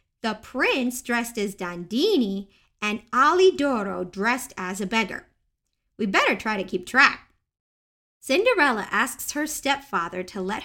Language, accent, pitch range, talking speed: English, American, 205-275 Hz, 130 wpm